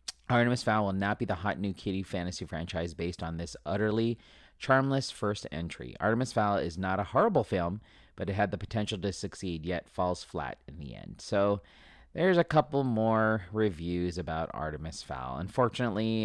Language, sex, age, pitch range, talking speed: English, male, 30-49, 90-115 Hz, 175 wpm